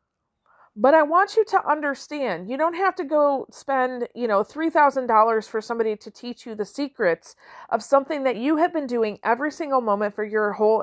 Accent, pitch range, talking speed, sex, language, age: American, 220-305 Hz, 195 wpm, female, English, 40-59